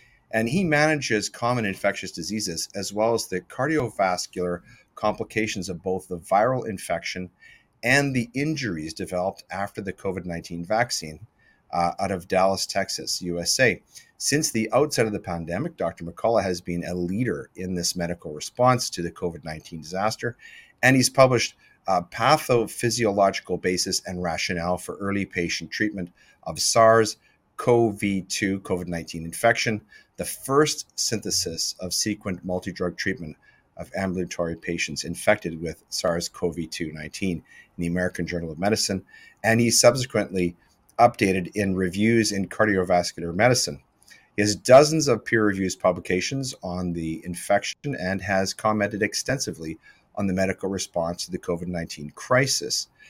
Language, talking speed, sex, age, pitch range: English, 130 wpm, male, 40-59, 85-110 Hz